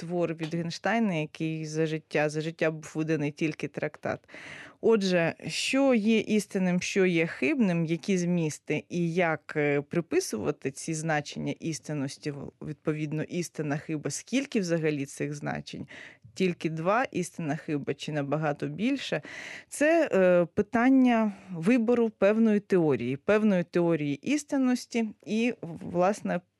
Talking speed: 115 wpm